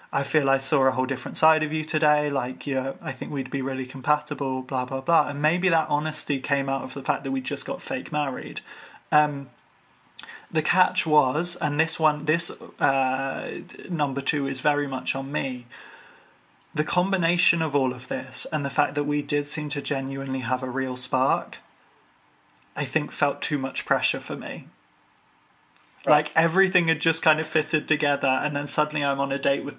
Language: English